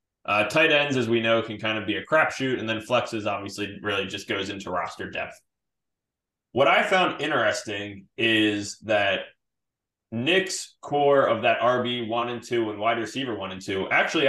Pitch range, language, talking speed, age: 100-120 Hz, English, 180 wpm, 20-39